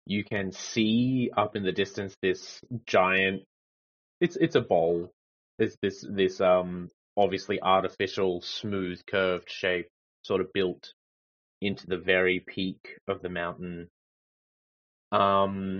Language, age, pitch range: English, 30-49, 90-105 Hz